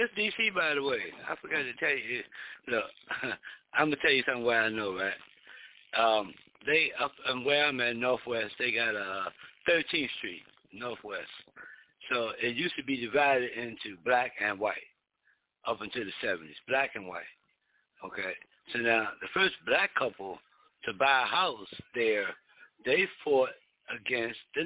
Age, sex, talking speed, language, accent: 60-79, male, 165 wpm, English, American